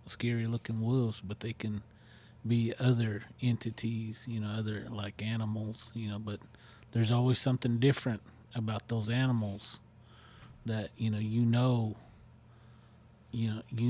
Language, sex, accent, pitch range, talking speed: English, male, American, 110-120 Hz, 130 wpm